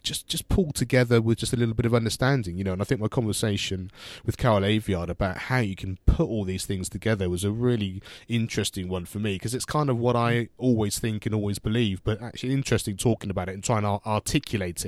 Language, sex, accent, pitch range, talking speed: English, male, British, 95-120 Hz, 235 wpm